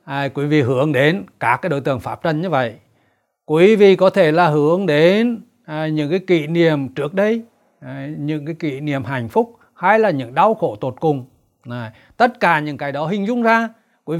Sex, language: male, Vietnamese